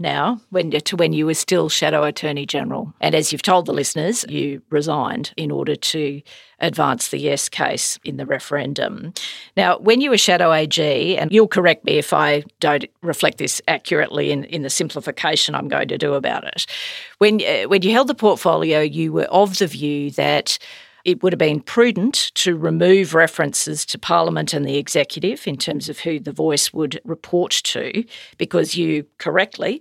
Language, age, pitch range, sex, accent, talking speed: English, 50-69, 150-205 Hz, female, Australian, 180 wpm